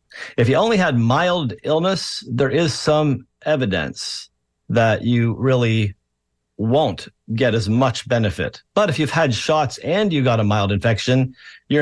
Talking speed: 150 wpm